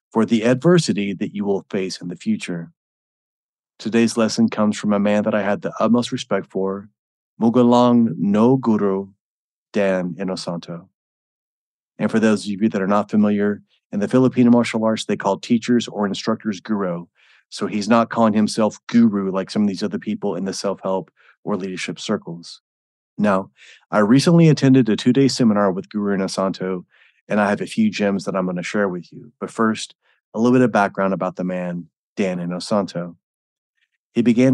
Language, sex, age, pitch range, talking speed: English, male, 30-49, 95-125 Hz, 180 wpm